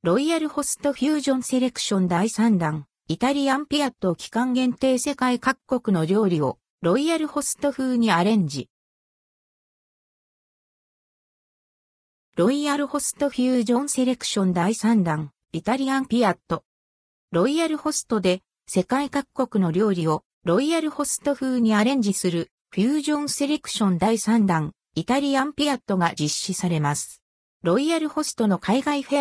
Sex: female